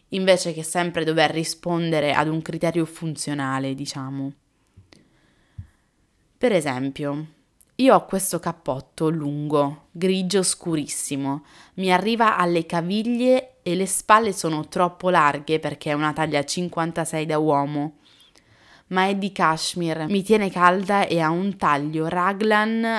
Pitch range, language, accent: 155-185 Hz, Italian, native